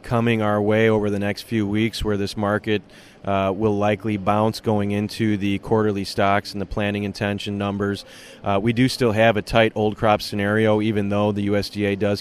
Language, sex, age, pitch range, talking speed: English, male, 30-49, 105-115 Hz, 195 wpm